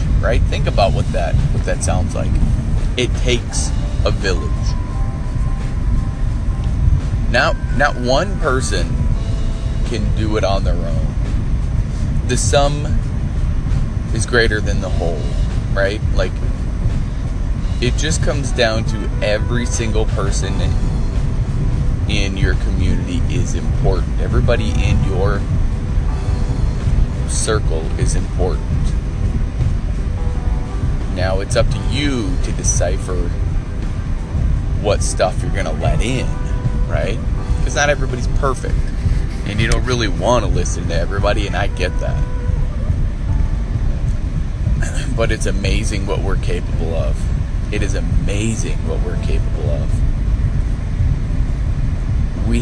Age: 30-49